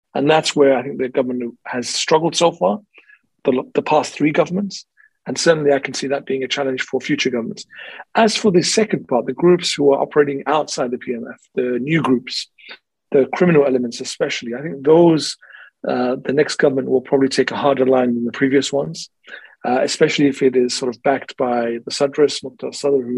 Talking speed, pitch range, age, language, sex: 205 wpm, 125-145 Hz, 40-59, English, male